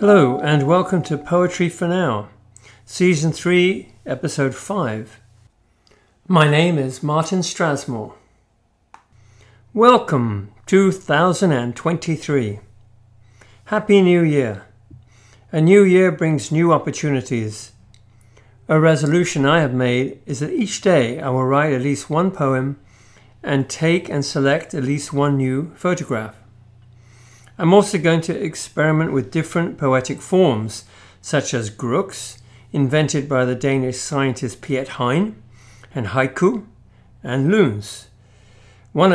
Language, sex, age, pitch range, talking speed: English, male, 50-69, 110-165 Hz, 115 wpm